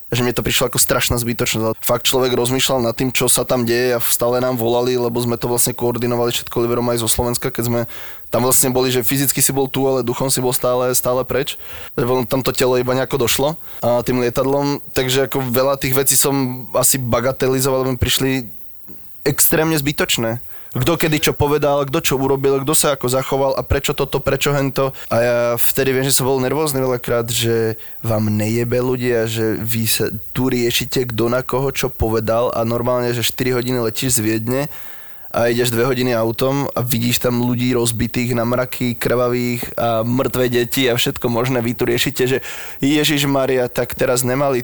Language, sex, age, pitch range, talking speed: Slovak, male, 20-39, 120-135 Hz, 195 wpm